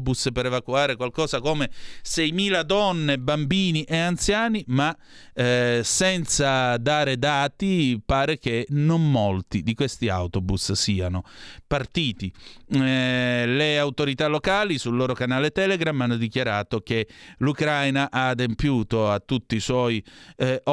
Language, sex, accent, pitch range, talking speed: Italian, male, native, 120-150 Hz, 120 wpm